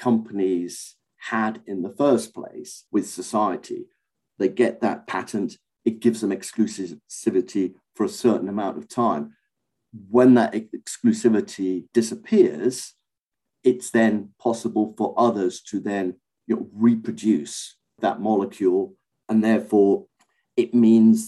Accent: British